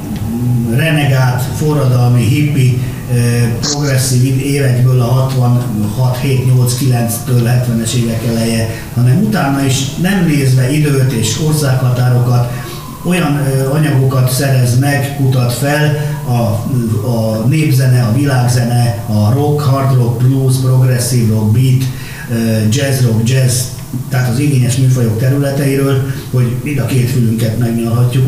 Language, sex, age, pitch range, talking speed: Hungarian, male, 50-69, 120-145 Hz, 110 wpm